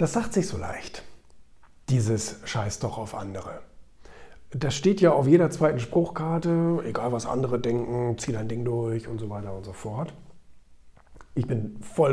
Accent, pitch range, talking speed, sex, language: German, 115-155 Hz, 155 wpm, male, German